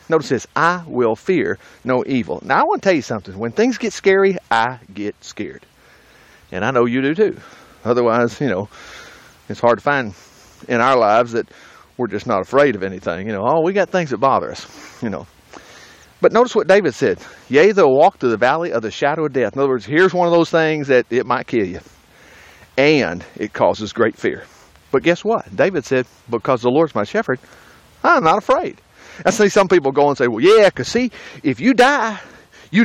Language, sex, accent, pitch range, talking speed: English, male, American, 120-180 Hz, 215 wpm